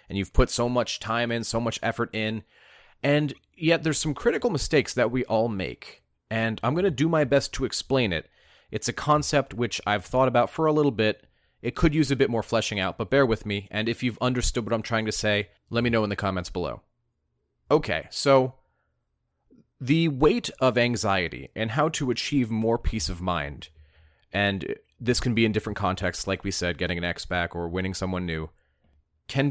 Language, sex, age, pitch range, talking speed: English, male, 30-49, 95-130 Hz, 210 wpm